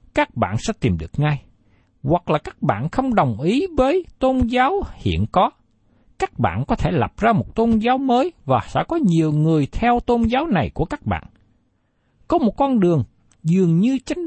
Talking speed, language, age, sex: 200 wpm, Vietnamese, 60-79, male